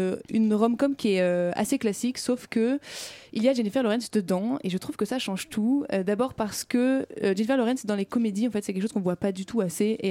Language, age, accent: French, 20-39, French